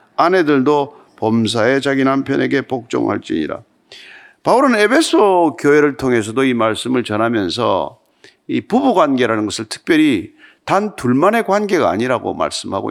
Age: 50-69